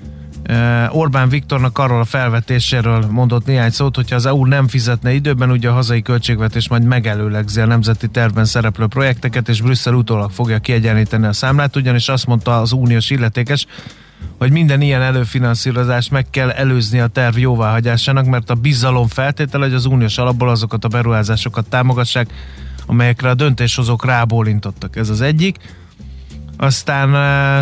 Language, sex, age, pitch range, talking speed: Hungarian, male, 30-49, 115-130 Hz, 150 wpm